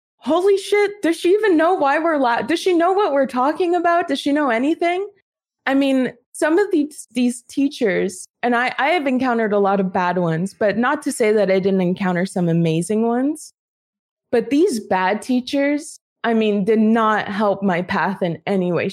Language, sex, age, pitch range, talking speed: English, female, 20-39, 195-260 Hz, 195 wpm